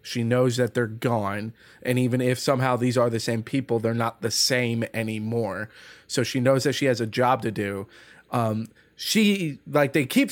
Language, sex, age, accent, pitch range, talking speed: English, male, 20-39, American, 125-155 Hz, 200 wpm